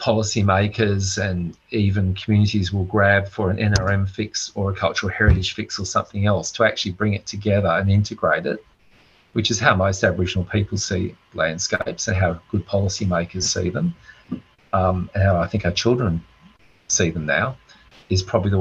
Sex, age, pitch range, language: male, 40-59, 90-105 Hz, English